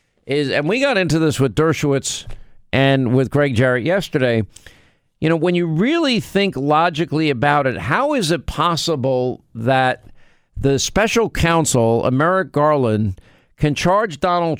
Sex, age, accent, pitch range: male, 50-69, American, 130-165 Hz